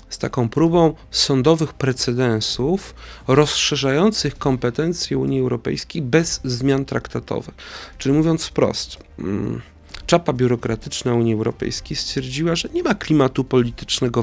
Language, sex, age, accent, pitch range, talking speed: Polish, male, 40-59, native, 120-160 Hz, 105 wpm